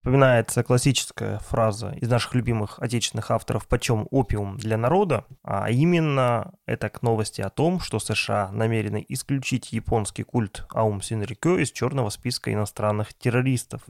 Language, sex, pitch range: Russian, male, 110-140 Hz